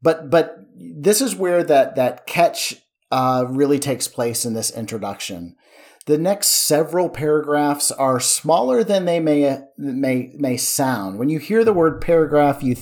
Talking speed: 160 wpm